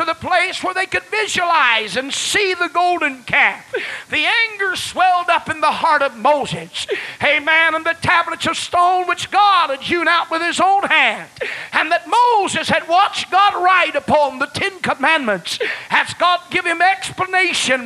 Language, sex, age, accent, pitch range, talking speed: English, male, 50-69, American, 320-385 Hz, 175 wpm